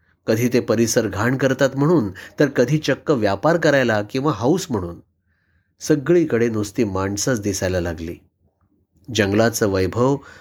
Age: 30-49